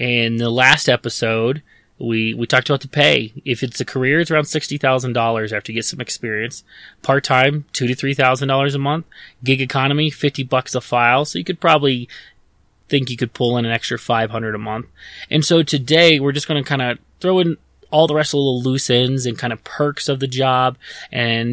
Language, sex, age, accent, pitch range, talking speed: English, male, 20-39, American, 115-145 Hz, 210 wpm